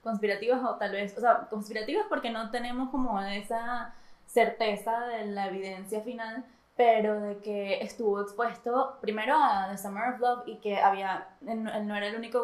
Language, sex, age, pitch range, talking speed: Spanish, female, 10-29, 205-235 Hz, 170 wpm